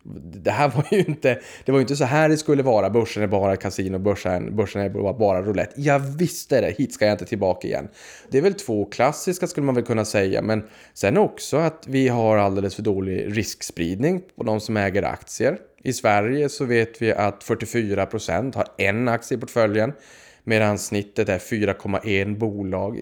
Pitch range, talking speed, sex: 100-120 Hz, 190 wpm, male